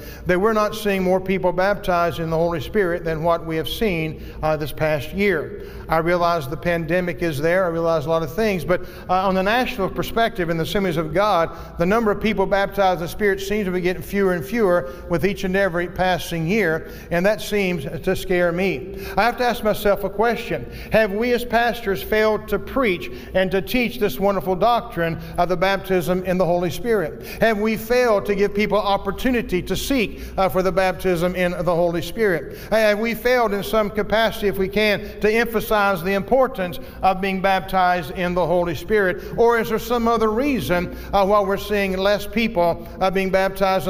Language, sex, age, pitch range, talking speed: English, male, 50-69, 180-210 Hz, 200 wpm